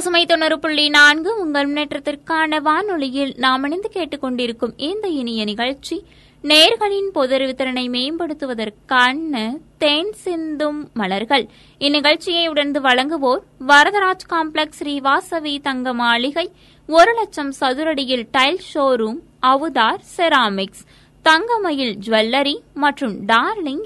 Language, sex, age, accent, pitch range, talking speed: Tamil, female, 20-39, native, 255-315 Hz, 75 wpm